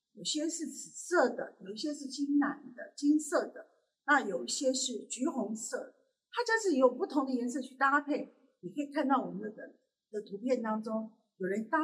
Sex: female